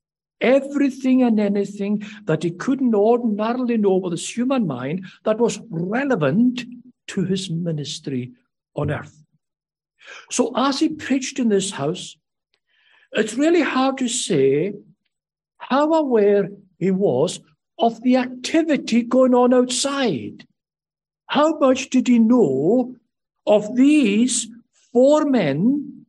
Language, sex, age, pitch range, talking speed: English, male, 60-79, 195-265 Hz, 115 wpm